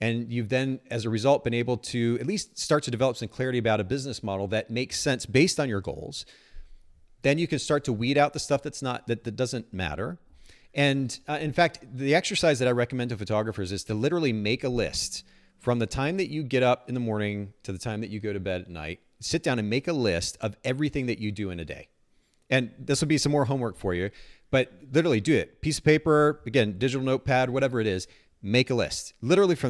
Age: 30-49